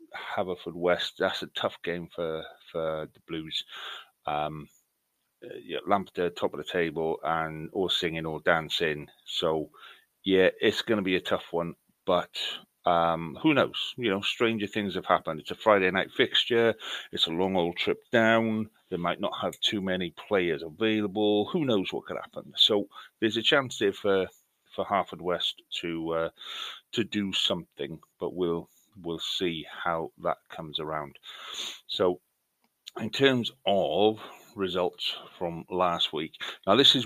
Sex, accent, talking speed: male, British, 155 wpm